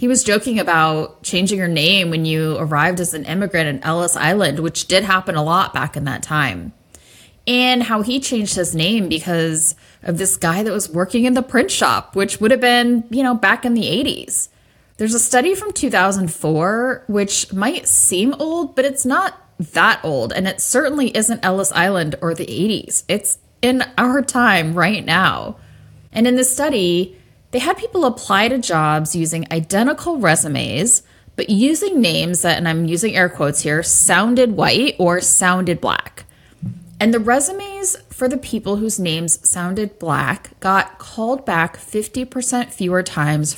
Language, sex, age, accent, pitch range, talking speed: English, female, 20-39, American, 165-245 Hz, 170 wpm